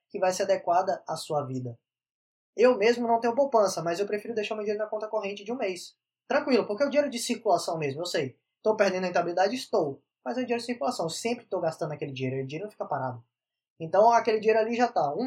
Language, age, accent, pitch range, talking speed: Portuguese, 10-29, Brazilian, 170-220 Hz, 250 wpm